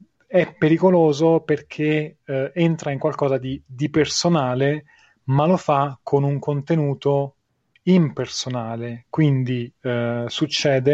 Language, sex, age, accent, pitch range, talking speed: Italian, male, 30-49, native, 125-150 Hz, 110 wpm